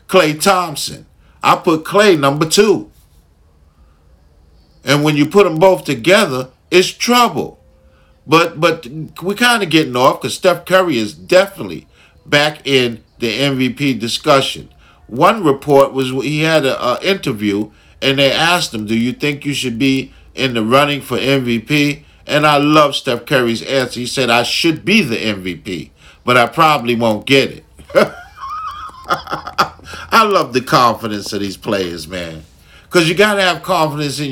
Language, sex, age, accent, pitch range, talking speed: English, male, 50-69, American, 110-160 Hz, 155 wpm